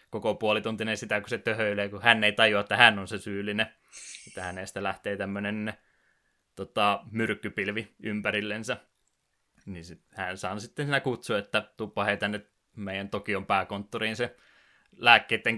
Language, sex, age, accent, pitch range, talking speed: Finnish, male, 20-39, native, 100-115 Hz, 145 wpm